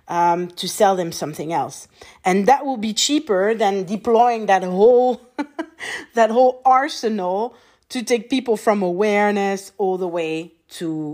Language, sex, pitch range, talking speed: English, female, 180-235 Hz, 145 wpm